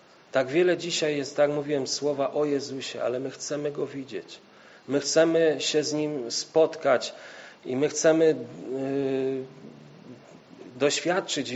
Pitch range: 125-145 Hz